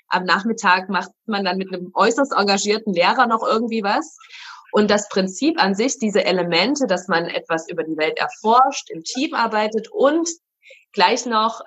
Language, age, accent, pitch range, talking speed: German, 20-39, German, 195-255 Hz, 170 wpm